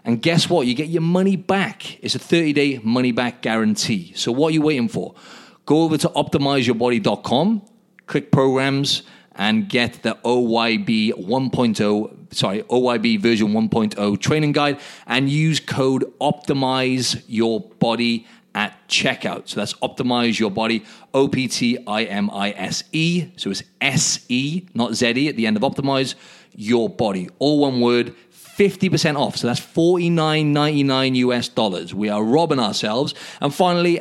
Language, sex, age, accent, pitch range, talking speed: English, male, 30-49, British, 115-155 Hz, 130 wpm